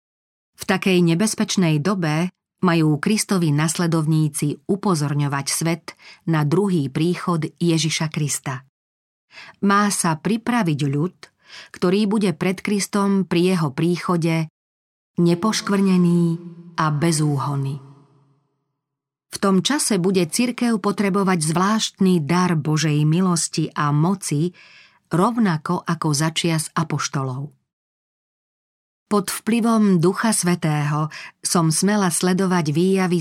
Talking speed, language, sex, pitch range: 95 wpm, Slovak, female, 155-190 Hz